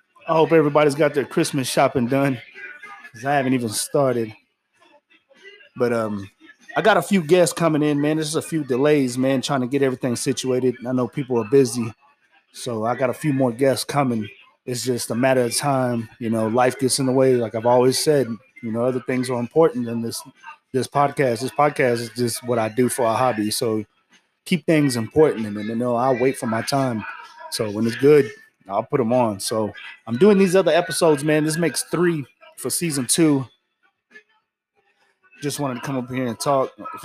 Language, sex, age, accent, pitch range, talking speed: English, male, 20-39, American, 120-155 Hz, 205 wpm